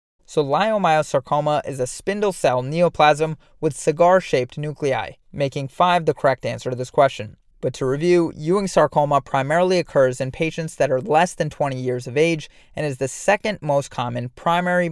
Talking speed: 170 wpm